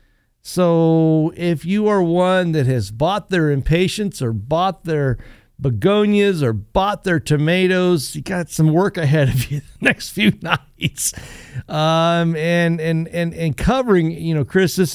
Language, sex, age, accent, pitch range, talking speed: English, male, 50-69, American, 125-175 Hz, 155 wpm